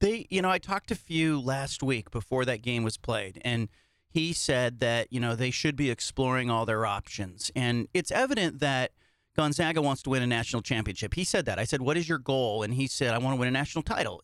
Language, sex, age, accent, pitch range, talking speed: English, male, 40-59, American, 125-170 Hz, 240 wpm